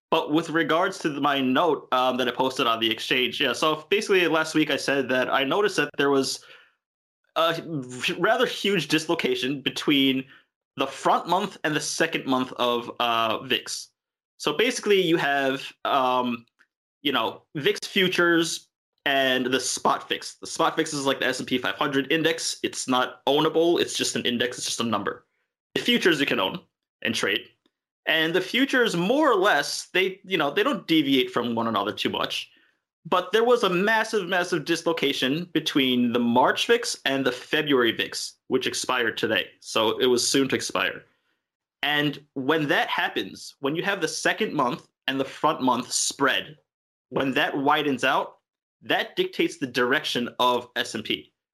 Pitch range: 130-175 Hz